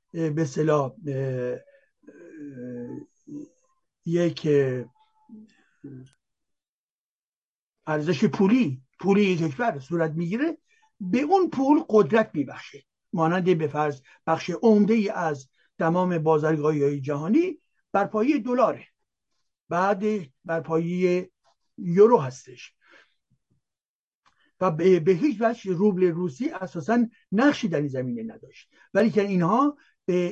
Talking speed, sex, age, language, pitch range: 95 wpm, male, 60-79, Persian, 155-215 Hz